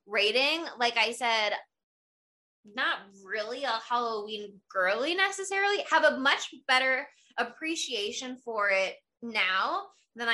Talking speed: 110 wpm